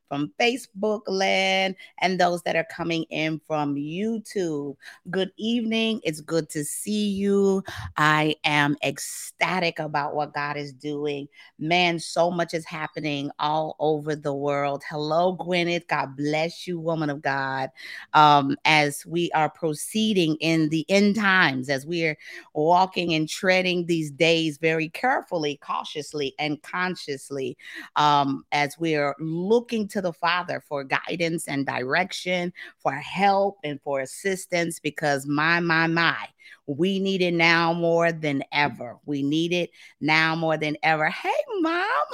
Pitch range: 150-195 Hz